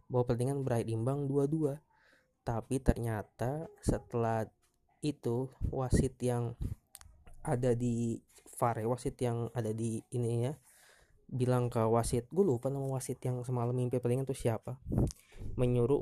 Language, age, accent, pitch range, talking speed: Indonesian, 20-39, native, 115-130 Hz, 125 wpm